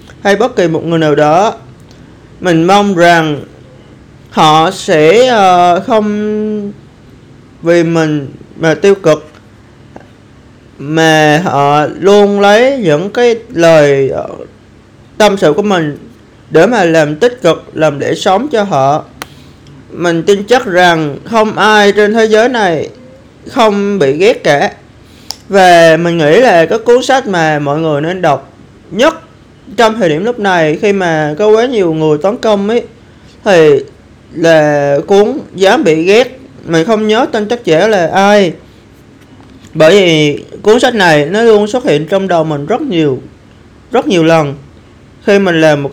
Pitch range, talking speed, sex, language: 155-210 Hz, 150 wpm, male, Vietnamese